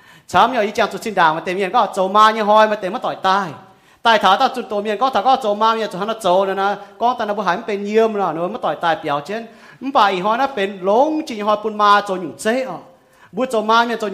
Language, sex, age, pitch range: English, male, 30-49, 185-240 Hz